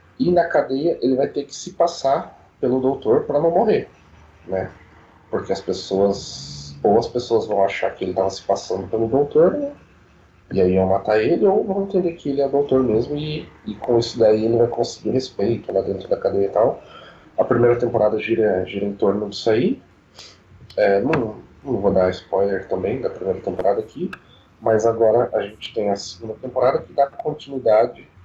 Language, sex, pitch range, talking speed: Portuguese, male, 95-130 Hz, 190 wpm